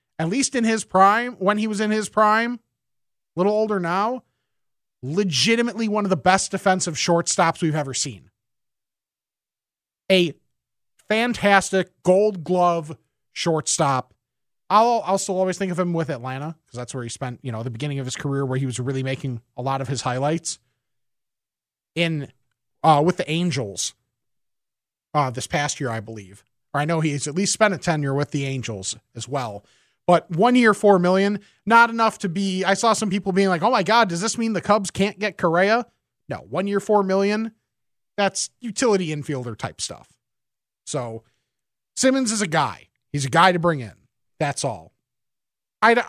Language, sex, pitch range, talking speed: English, male, 135-200 Hz, 175 wpm